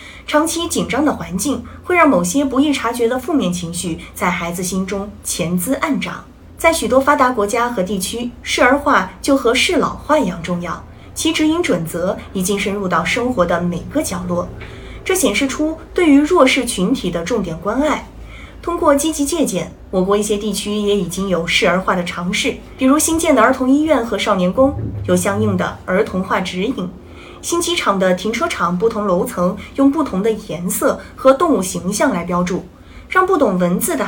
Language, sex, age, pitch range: Chinese, female, 20-39, 185-280 Hz